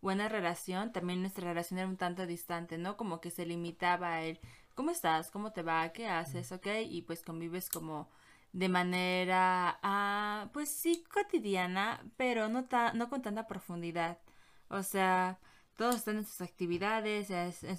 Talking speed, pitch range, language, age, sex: 165 wpm, 175-205 Hz, Spanish, 20-39, female